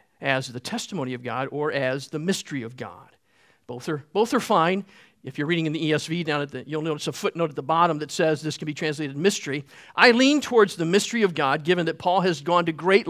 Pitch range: 155-255 Hz